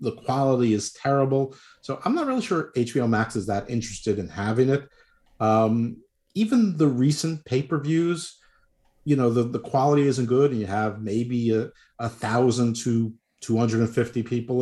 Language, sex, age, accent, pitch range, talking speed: English, male, 50-69, American, 110-140 Hz, 155 wpm